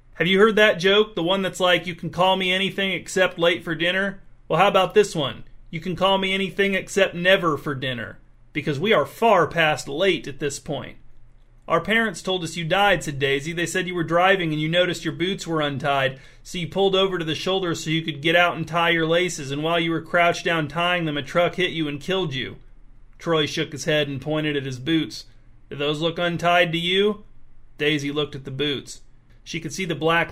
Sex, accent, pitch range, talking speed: male, American, 145-170 Hz, 230 wpm